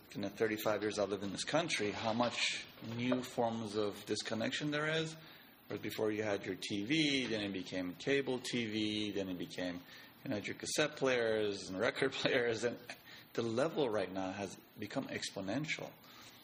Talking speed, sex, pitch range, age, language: 170 wpm, male, 100-120 Hz, 30-49, English